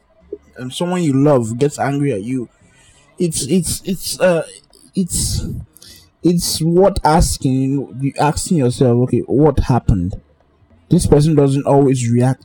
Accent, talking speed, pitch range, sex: Nigerian, 130 wpm, 115-155 Hz, male